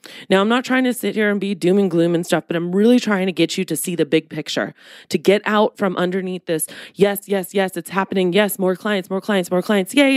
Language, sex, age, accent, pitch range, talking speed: English, female, 20-39, American, 175-215 Hz, 265 wpm